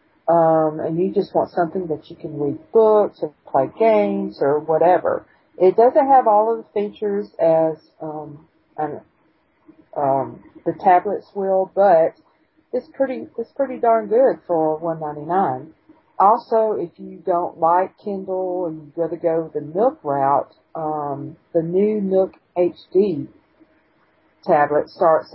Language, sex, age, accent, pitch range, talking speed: English, female, 50-69, American, 155-195 Hz, 145 wpm